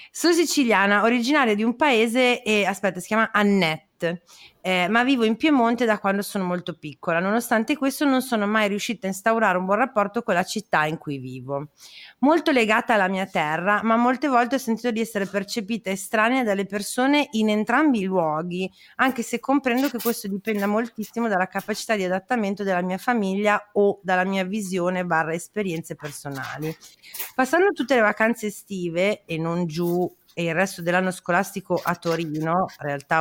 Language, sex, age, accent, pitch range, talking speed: Italian, female, 30-49, native, 180-235 Hz, 170 wpm